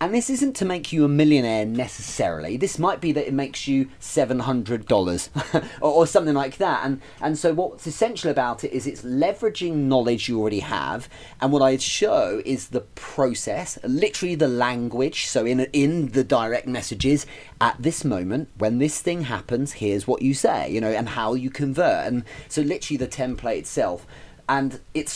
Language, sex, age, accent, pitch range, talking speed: English, male, 30-49, British, 120-150 Hz, 190 wpm